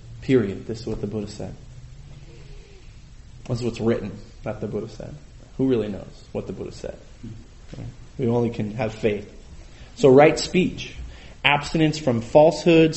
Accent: American